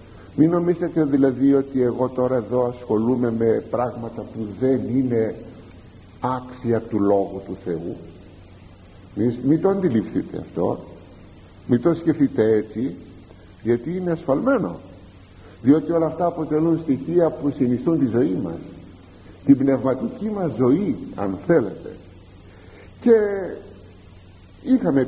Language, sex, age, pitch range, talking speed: Greek, male, 50-69, 95-155 Hz, 110 wpm